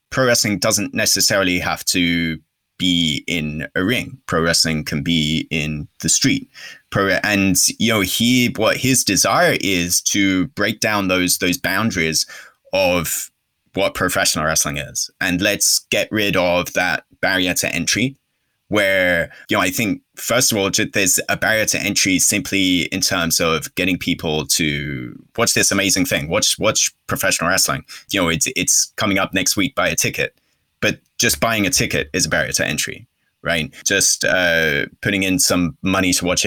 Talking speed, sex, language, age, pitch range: 175 wpm, male, English, 20-39, 90-120 Hz